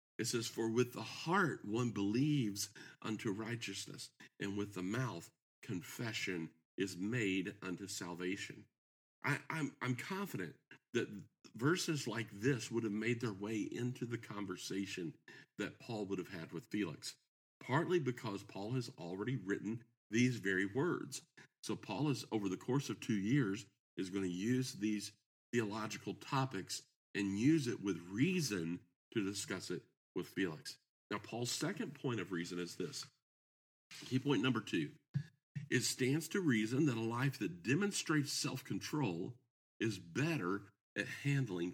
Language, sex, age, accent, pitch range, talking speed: English, male, 50-69, American, 95-130 Hz, 150 wpm